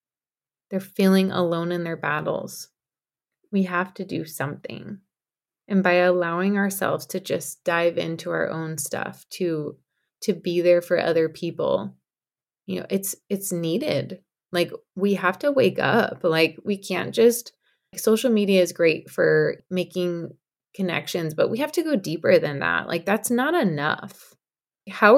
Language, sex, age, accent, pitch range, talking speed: English, female, 20-39, American, 165-200 Hz, 155 wpm